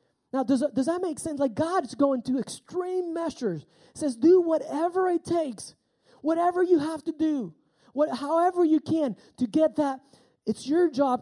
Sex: male